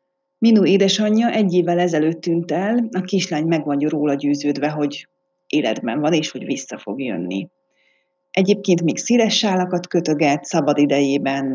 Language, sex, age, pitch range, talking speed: Hungarian, female, 30-49, 155-180 Hz, 145 wpm